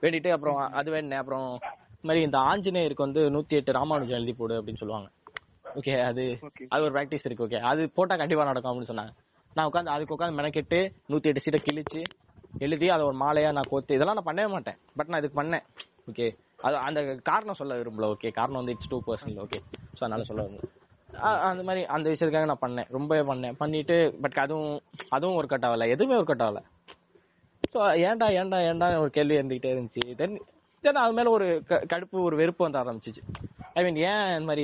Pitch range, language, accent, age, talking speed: 125-170 Hz, Tamil, native, 20-39, 185 wpm